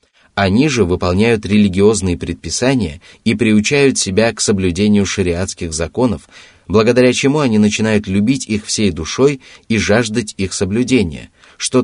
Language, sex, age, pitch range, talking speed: Russian, male, 30-49, 95-125 Hz, 125 wpm